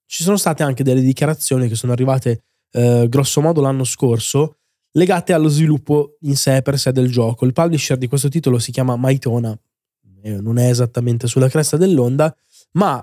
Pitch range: 120-150 Hz